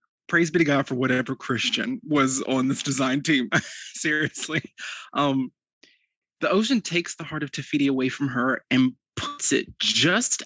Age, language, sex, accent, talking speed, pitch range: 20-39, English, male, American, 160 wpm, 125-145 Hz